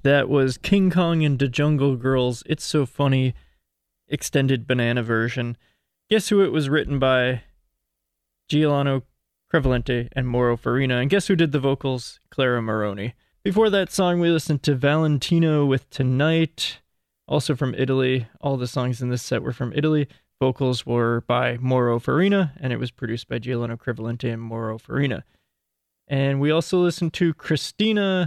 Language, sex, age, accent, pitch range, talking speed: English, male, 20-39, American, 120-150 Hz, 160 wpm